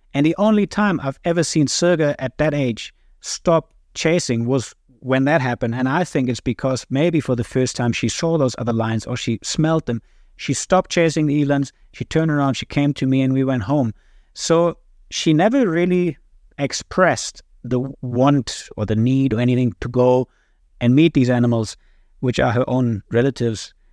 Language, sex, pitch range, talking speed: English, male, 115-145 Hz, 190 wpm